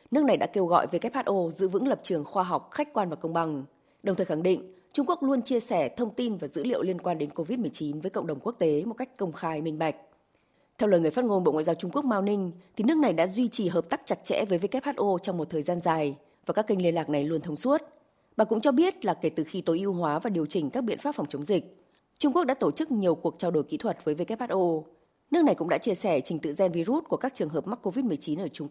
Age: 20-39